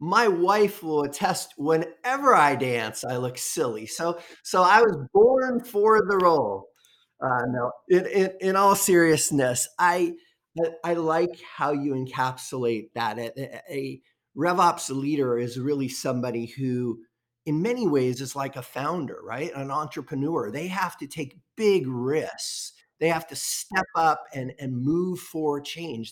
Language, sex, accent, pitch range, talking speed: English, male, American, 130-175 Hz, 150 wpm